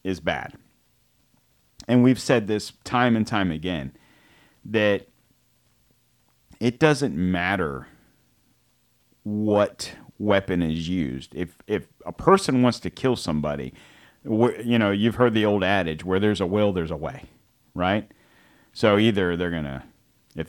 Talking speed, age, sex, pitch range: 135 wpm, 40-59, male, 85-110 Hz